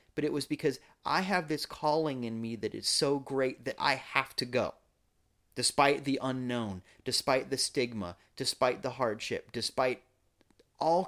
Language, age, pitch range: English, 30-49, 120-160 Hz